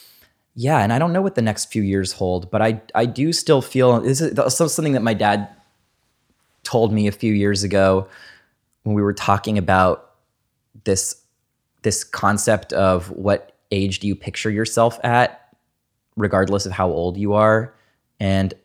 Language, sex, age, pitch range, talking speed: English, male, 20-39, 95-110 Hz, 170 wpm